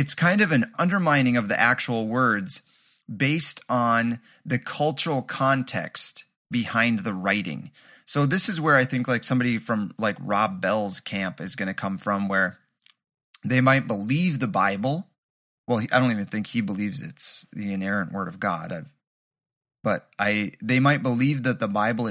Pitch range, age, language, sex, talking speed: 115-140 Hz, 30-49, English, male, 170 wpm